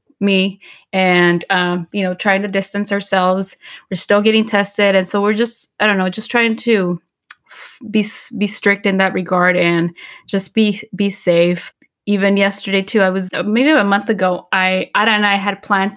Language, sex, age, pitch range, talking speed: English, female, 20-39, 185-215 Hz, 185 wpm